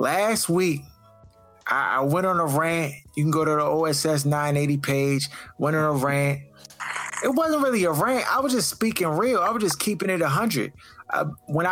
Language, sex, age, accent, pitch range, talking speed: English, male, 20-39, American, 145-180 Hz, 195 wpm